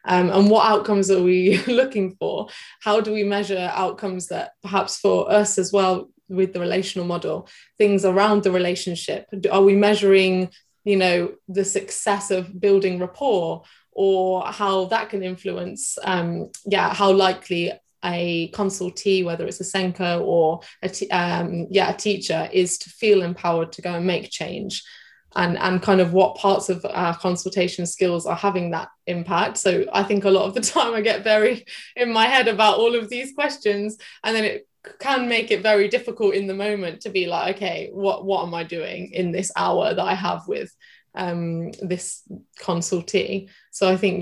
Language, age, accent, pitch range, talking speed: English, 20-39, British, 180-205 Hz, 180 wpm